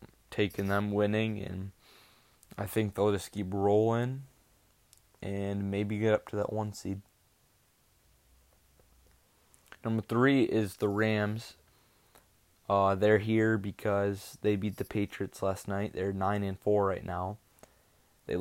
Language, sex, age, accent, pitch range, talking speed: English, male, 20-39, American, 95-110 Hz, 130 wpm